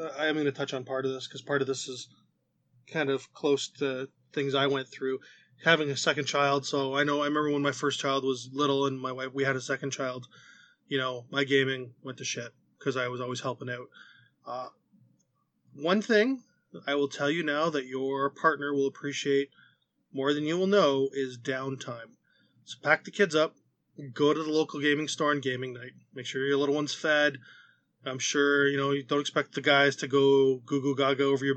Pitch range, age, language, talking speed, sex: 135-155 Hz, 20-39, English, 215 wpm, male